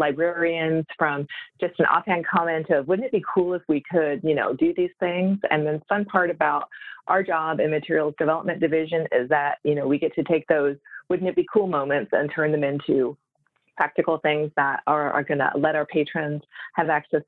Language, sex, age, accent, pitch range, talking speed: English, female, 30-49, American, 155-185 Hz, 205 wpm